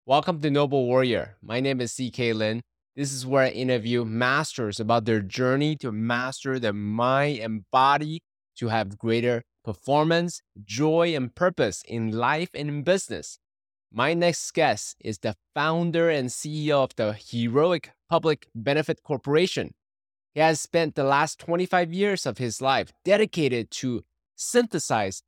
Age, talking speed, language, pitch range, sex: 20-39, 150 wpm, English, 115-160 Hz, male